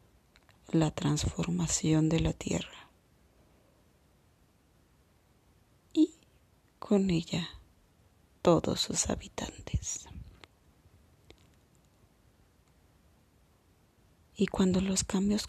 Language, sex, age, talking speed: Spanish, female, 30-49, 60 wpm